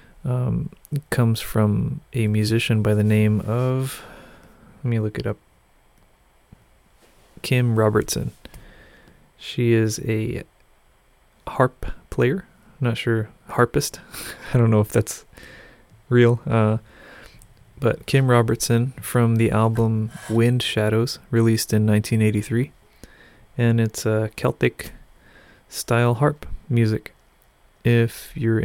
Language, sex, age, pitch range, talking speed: English, male, 30-49, 105-120 Hz, 115 wpm